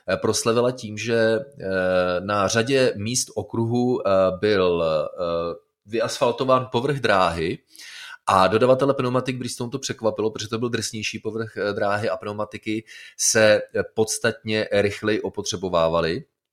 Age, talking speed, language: 30-49, 105 wpm, Czech